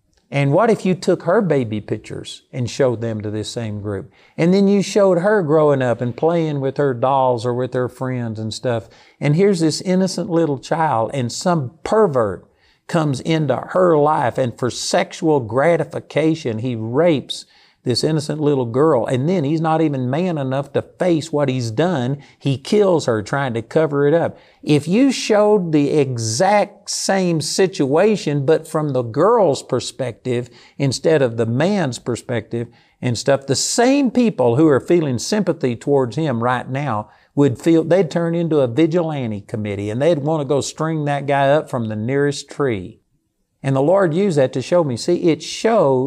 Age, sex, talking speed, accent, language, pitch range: 50-69, male, 180 wpm, American, English, 130-180 Hz